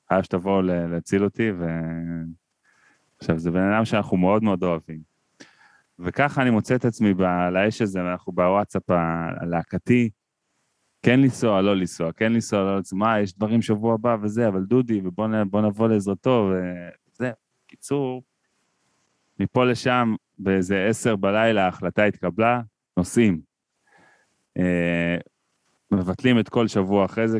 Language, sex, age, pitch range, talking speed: Hebrew, male, 20-39, 90-115 Hz, 130 wpm